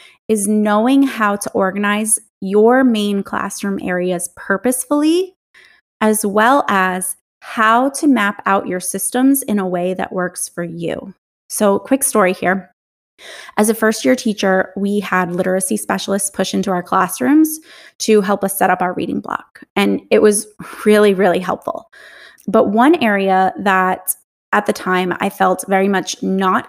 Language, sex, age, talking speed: English, female, 20-39, 155 wpm